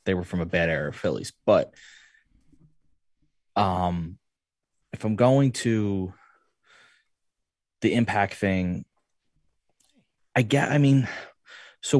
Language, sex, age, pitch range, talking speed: English, male, 20-39, 95-115 Hz, 110 wpm